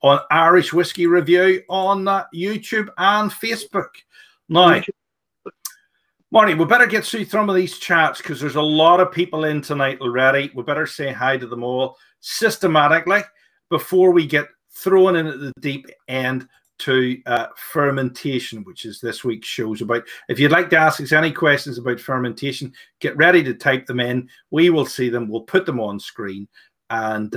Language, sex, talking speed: English, male, 175 wpm